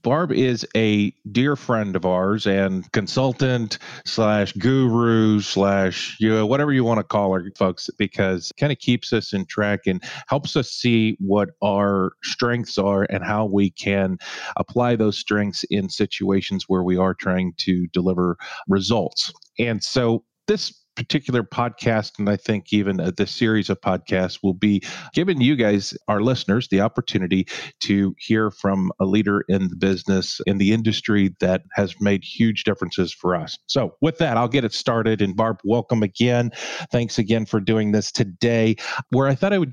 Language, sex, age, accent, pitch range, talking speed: English, male, 40-59, American, 95-120 Hz, 170 wpm